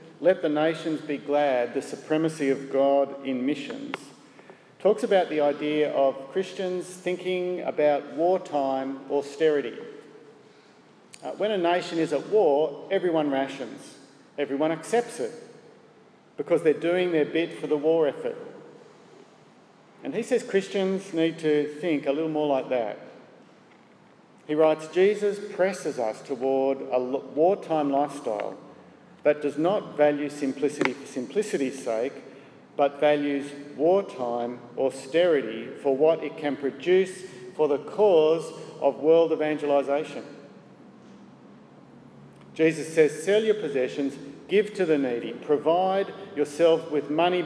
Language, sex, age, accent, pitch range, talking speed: English, male, 50-69, Australian, 140-175 Hz, 125 wpm